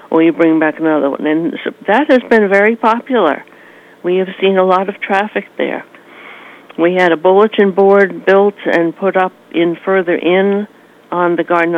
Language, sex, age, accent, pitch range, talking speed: English, female, 60-79, American, 155-185 Hz, 175 wpm